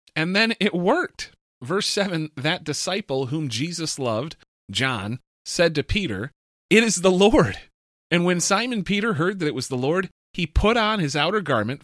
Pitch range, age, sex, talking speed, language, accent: 100-145 Hz, 30-49, male, 175 wpm, English, American